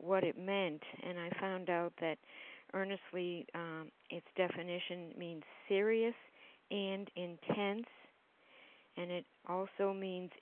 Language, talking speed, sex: English, 115 wpm, female